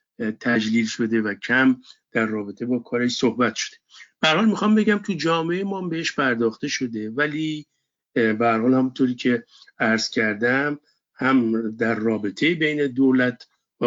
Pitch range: 115-155 Hz